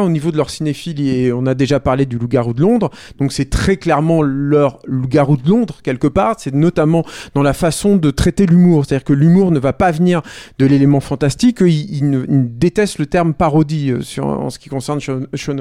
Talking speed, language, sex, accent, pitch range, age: 210 wpm, French, male, French, 130-165 Hz, 40-59